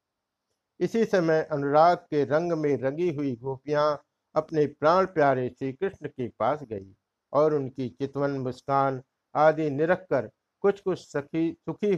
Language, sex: Hindi, male